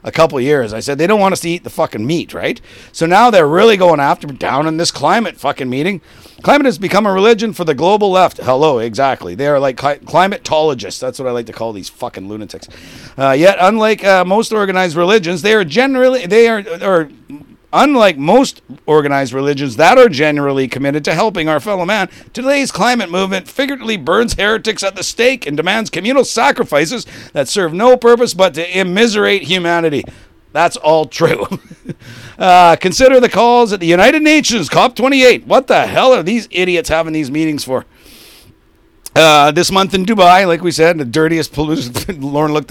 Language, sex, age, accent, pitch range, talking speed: English, male, 50-69, American, 140-210 Hz, 190 wpm